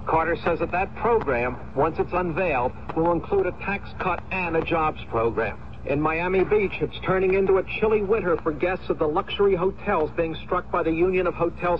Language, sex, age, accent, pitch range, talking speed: English, male, 60-79, American, 165-195 Hz, 200 wpm